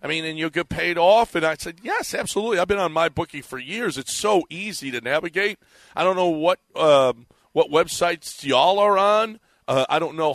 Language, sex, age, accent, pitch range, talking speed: English, male, 40-59, American, 130-185 Hz, 220 wpm